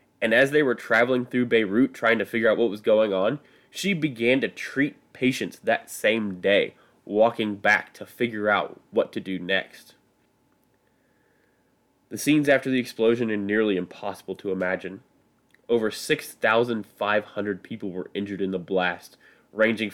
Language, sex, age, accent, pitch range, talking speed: English, male, 20-39, American, 95-120 Hz, 155 wpm